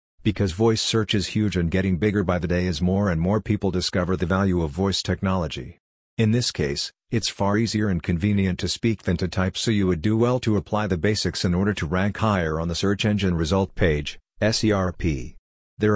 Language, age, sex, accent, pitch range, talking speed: English, 50-69, male, American, 90-105 Hz, 215 wpm